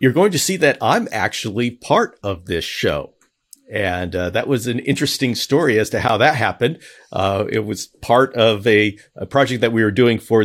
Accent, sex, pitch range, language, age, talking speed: American, male, 95-130 Hz, English, 50-69, 205 wpm